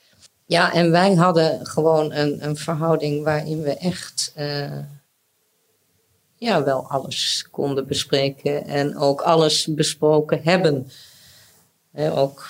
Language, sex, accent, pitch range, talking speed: Dutch, female, Dutch, 140-165 Hz, 105 wpm